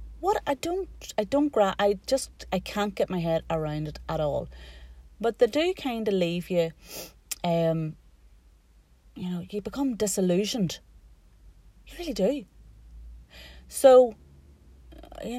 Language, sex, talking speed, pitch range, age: English, female, 135 wpm, 150-195 Hz, 30-49